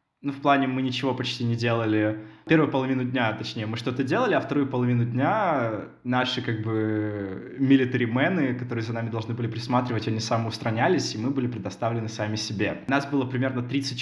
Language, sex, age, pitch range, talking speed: Russian, male, 20-39, 120-145 Hz, 175 wpm